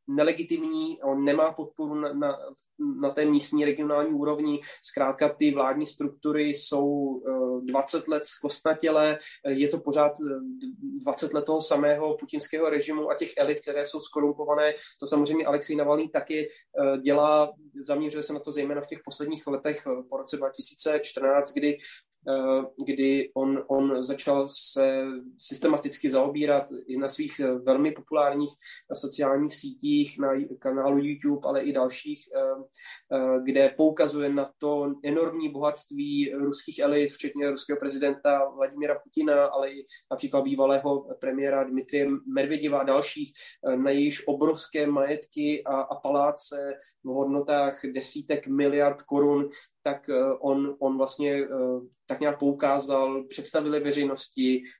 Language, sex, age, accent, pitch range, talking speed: Czech, male, 20-39, native, 140-150 Hz, 125 wpm